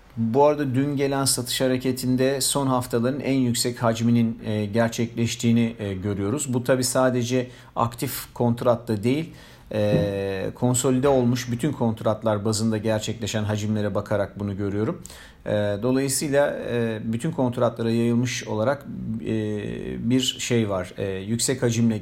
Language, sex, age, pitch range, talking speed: Turkish, male, 50-69, 110-130 Hz, 105 wpm